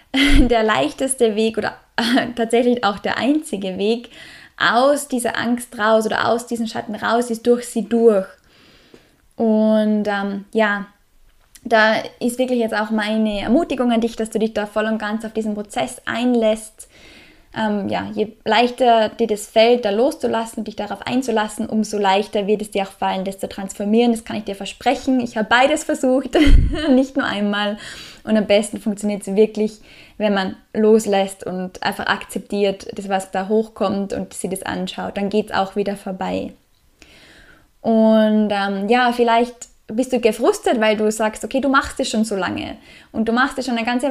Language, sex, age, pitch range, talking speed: German, female, 10-29, 210-245 Hz, 175 wpm